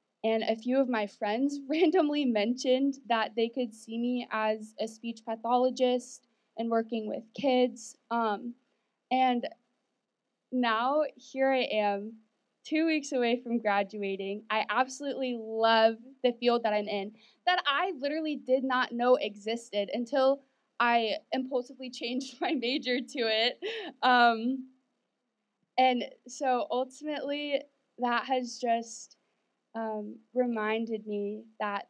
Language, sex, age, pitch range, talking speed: English, female, 20-39, 215-255 Hz, 125 wpm